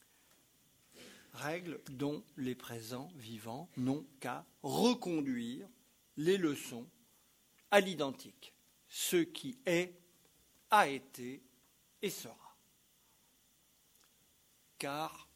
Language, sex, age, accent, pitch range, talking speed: French, male, 60-79, French, 130-185 Hz, 80 wpm